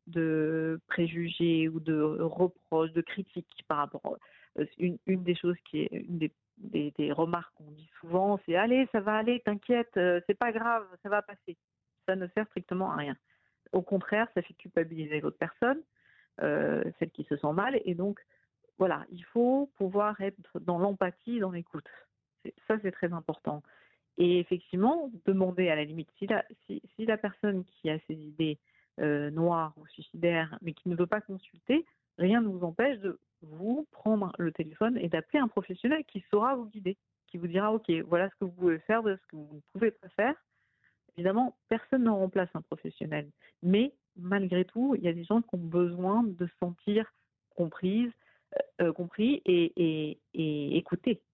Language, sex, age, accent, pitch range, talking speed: French, female, 50-69, French, 170-215 Hz, 190 wpm